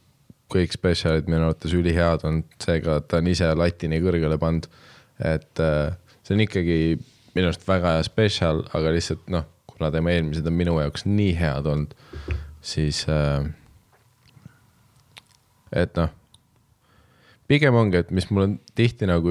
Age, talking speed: 20-39, 140 wpm